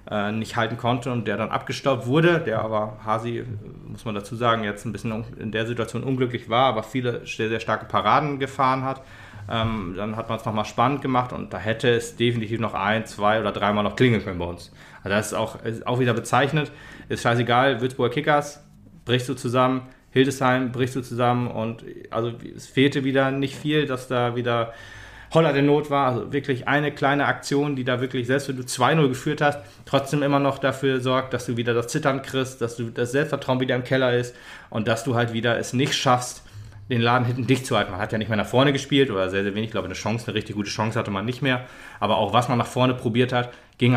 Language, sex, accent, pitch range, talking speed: German, male, German, 115-130 Hz, 225 wpm